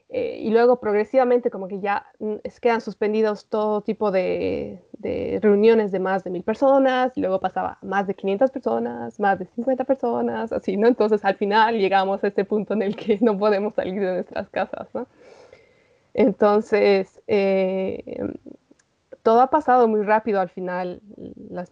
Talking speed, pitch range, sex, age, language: 165 wpm, 195-230 Hz, female, 20-39, Spanish